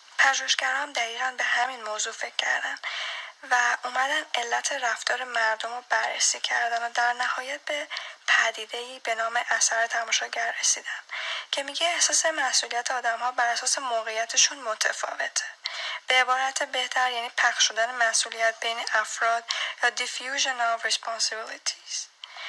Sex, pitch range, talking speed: female, 235-270 Hz, 125 wpm